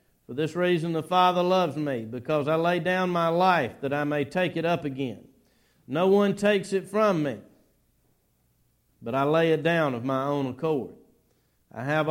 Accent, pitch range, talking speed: American, 120-160 Hz, 185 wpm